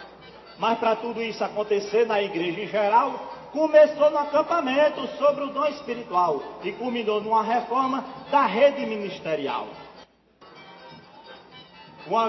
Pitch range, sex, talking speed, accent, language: 210-270 Hz, male, 115 wpm, Brazilian, Portuguese